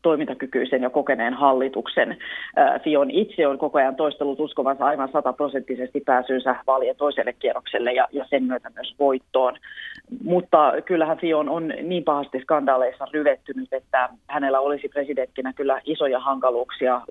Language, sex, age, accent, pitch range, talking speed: Finnish, female, 30-49, native, 130-150 Hz, 135 wpm